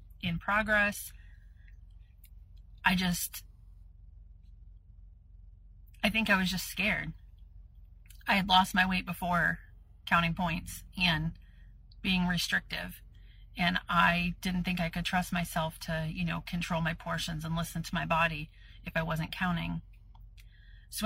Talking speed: 130 wpm